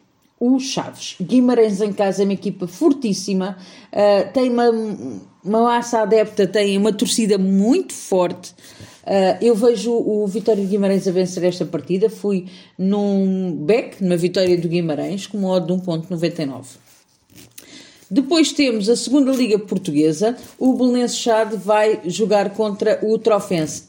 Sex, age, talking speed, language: female, 40-59, 145 wpm, Portuguese